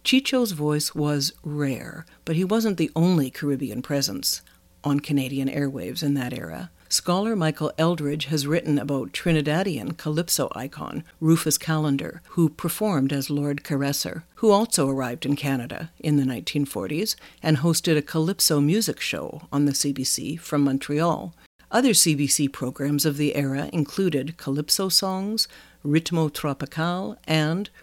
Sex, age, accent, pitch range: female, 60-79, American, 140-170 Hz